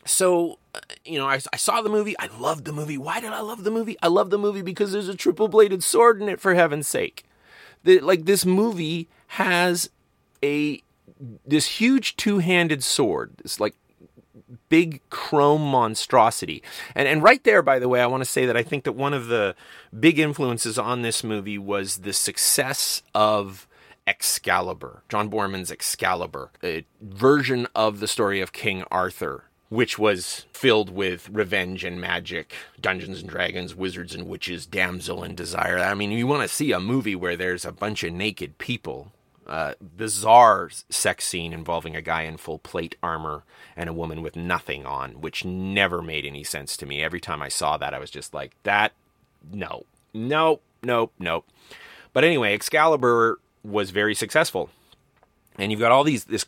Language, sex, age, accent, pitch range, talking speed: English, male, 30-49, American, 95-155 Hz, 180 wpm